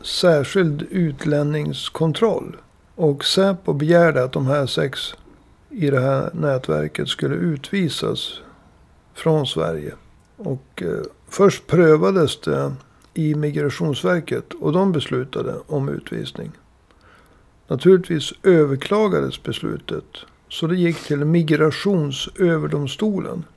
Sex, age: male, 60-79